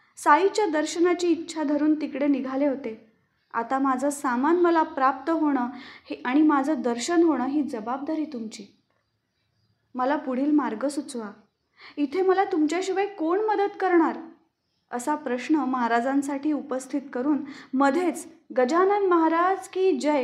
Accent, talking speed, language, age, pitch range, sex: native, 120 wpm, Marathi, 20-39, 250-320 Hz, female